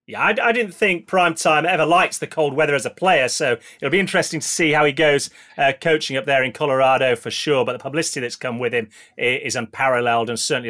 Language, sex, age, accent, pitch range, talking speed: English, male, 30-49, British, 135-170 Hz, 240 wpm